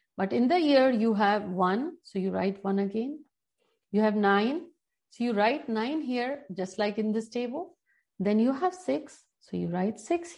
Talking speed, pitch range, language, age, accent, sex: 190 wpm, 210-295 Hz, Hindi, 50-69, native, female